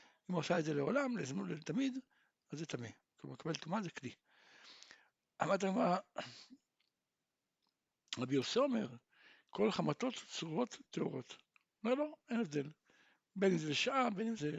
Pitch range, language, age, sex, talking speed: 160-240 Hz, Hebrew, 60-79, male, 145 wpm